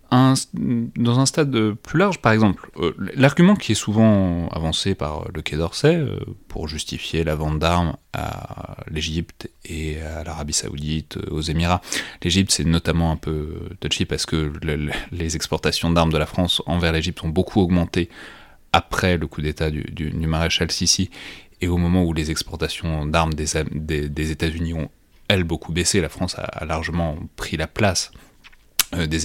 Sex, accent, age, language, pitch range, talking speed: male, French, 30-49, French, 80-100 Hz, 170 wpm